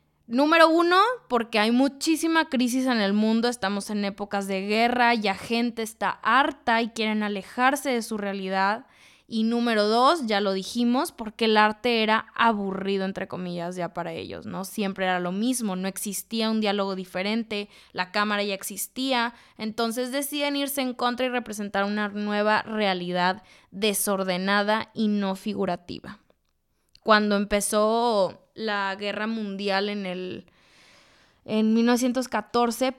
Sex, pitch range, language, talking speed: female, 195-235 Hz, Spanish, 140 wpm